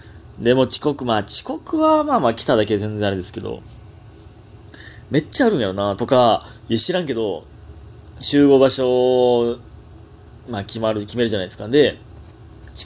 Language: Japanese